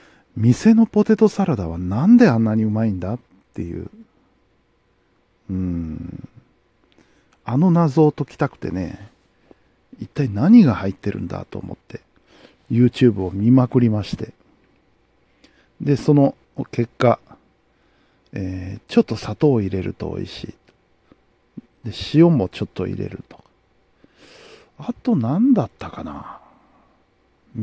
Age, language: 50-69, Japanese